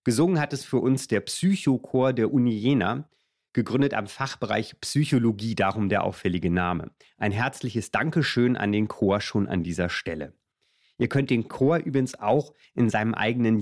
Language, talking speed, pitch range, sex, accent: German, 165 wpm, 105-135 Hz, male, German